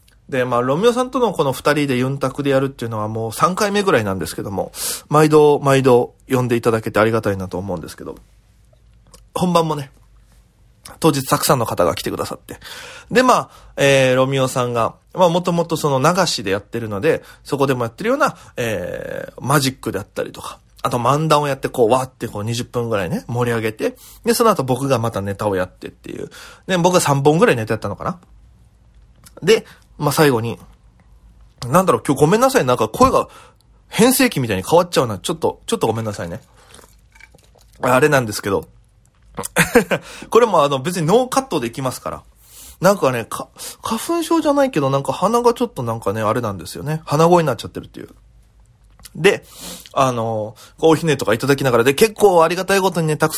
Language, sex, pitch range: Japanese, male, 115-170 Hz